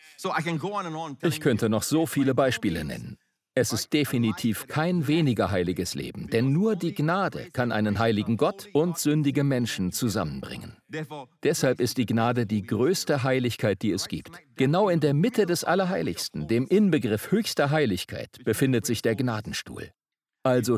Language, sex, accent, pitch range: German, male, German, 110-150 Hz